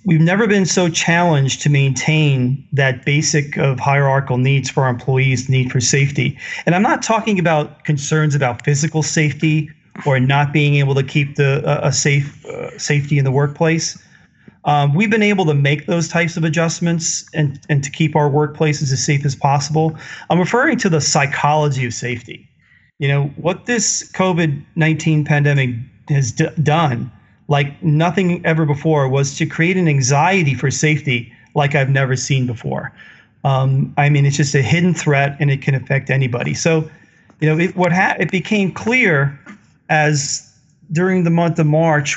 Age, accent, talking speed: 40-59, American, 170 wpm